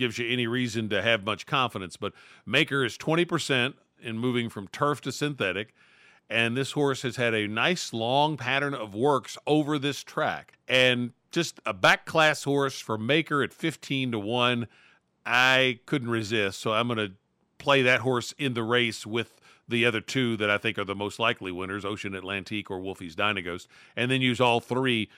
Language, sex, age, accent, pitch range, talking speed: English, male, 50-69, American, 115-145 Hz, 185 wpm